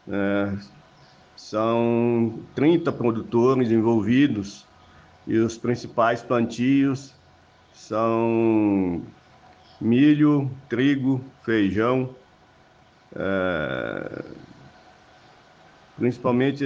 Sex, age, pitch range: male, 50-69, 100-130 Hz